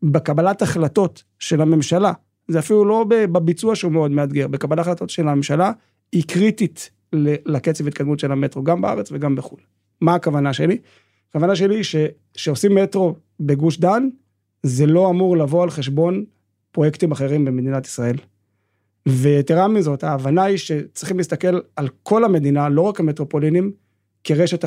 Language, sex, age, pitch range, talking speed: Hebrew, male, 30-49, 145-175 Hz, 140 wpm